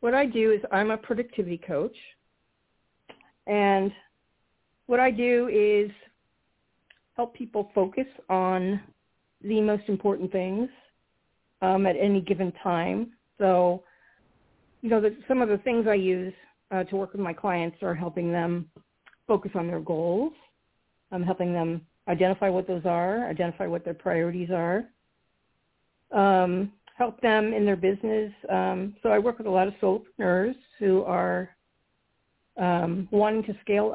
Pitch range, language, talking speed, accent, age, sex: 170-210 Hz, English, 145 wpm, American, 50-69, female